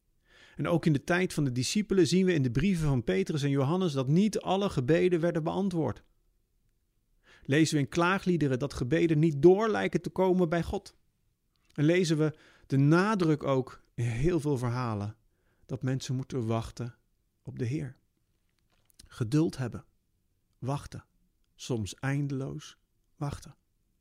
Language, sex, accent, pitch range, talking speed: Dutch, male, Dutch, 125-180 Hz, 145 wpm